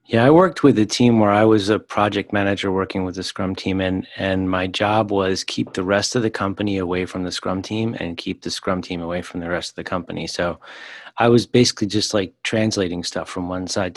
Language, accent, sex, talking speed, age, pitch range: English, American, male, 240 wpm, 30-49, 95-110 Hz